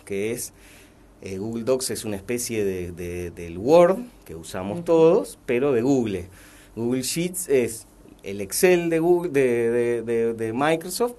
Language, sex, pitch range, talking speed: Spanish, male, 100-140 Hz, 130 wpm